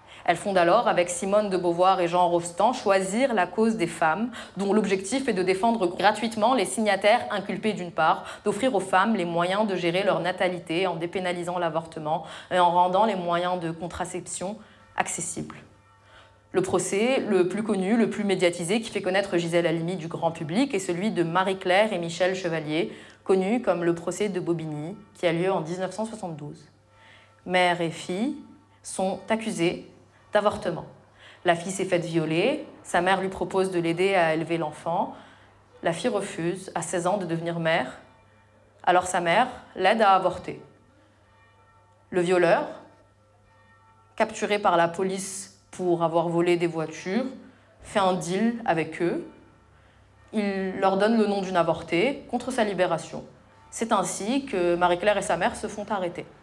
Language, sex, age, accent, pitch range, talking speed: French, female, 20-39, French, 165-200 Hz, 160 wpm